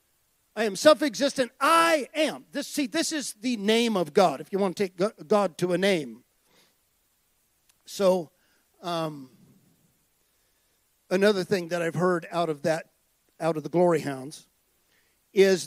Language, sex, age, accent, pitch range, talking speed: English, male, 50-69, American, 190-290 Hz, 145 wpm